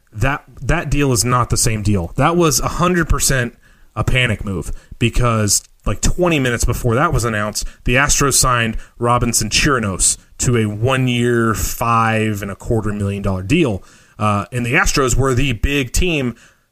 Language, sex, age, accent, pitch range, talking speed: English, male, 30-49, American, 115-140 Hz, 145 wpm